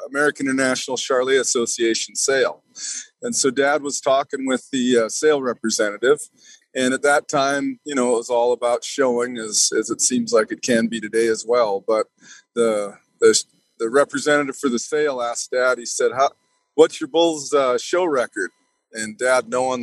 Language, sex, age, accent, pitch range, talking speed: English, male, 40-59, American, 120-155 Hz, 180 wpm